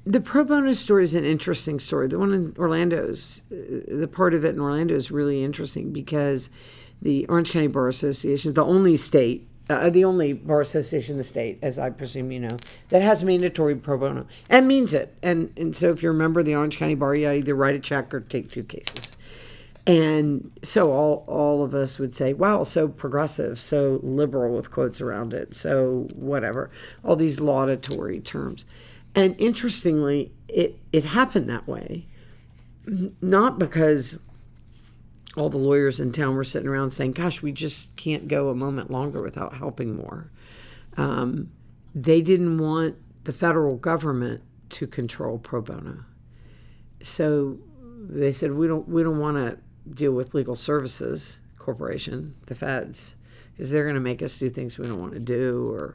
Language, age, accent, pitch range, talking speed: English, 50-69, American, 135-165 Hz, 175 wpm